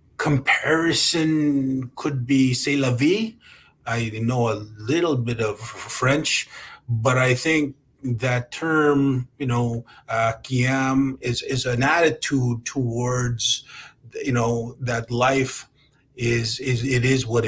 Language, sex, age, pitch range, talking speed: French, male, 30-49, 115-130 Hz, 120 wpm